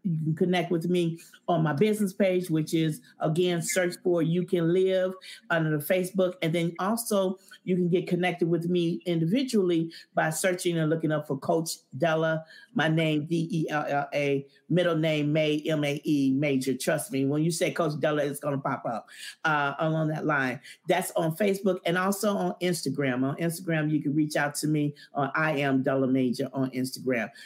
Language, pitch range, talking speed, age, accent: English, 150-175 Hz, 180 wpm, 40-59, American